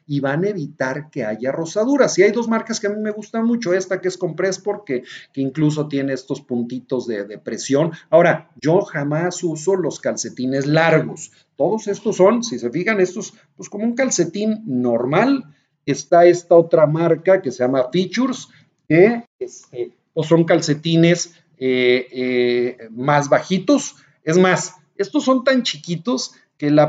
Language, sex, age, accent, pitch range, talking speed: Spanish, male, 40-59, Mexican, 140-190 Hz, 165 wpm